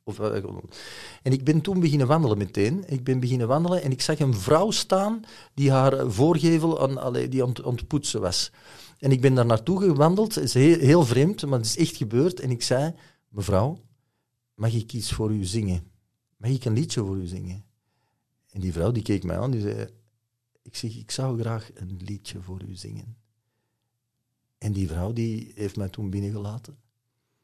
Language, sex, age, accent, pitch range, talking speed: Dutch, male, 50-69, Dutch, 105-130 Hz, 185 wpm